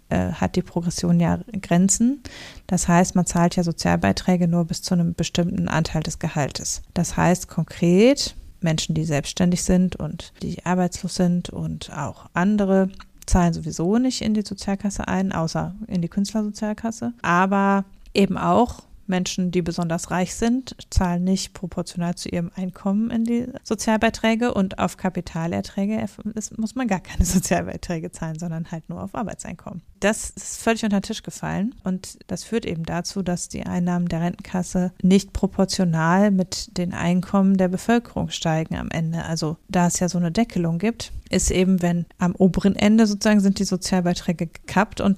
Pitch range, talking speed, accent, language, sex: 175-200 Hz, 165 wpm, German, German, female